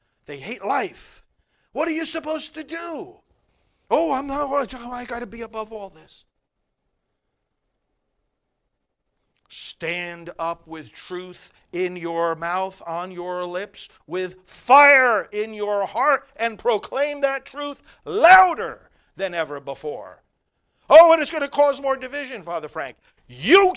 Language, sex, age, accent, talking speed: English, male, 50-69, American, 130 wpm